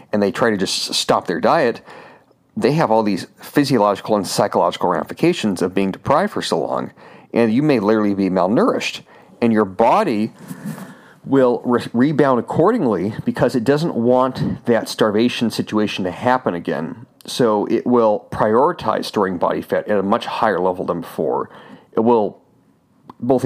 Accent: American